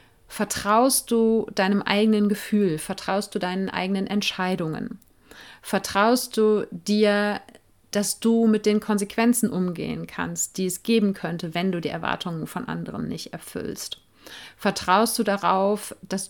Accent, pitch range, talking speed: German, 185-225 Hz, 135 wpm